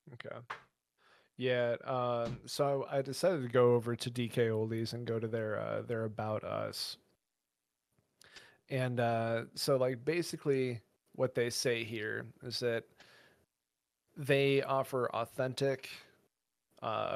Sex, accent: male, American